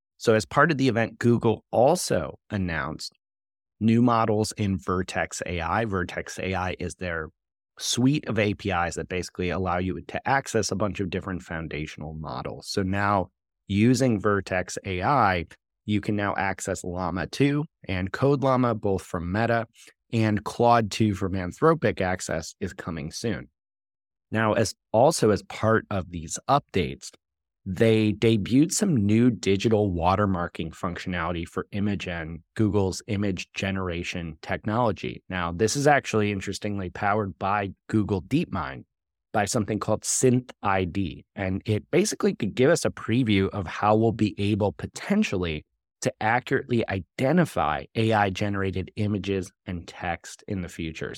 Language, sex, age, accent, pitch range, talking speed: English, male, 30-49, American, 90-110 Hz, 135 wpm